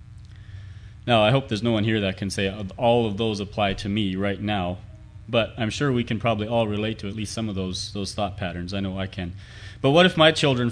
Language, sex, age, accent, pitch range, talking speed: English, male, 30-49, American, 100-115 Hz, 245 wpm